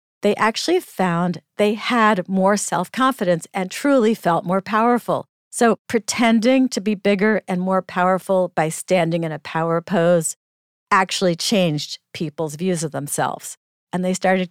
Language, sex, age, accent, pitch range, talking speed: English, female, 50-69, American, 165-220 Hz, 145 wpm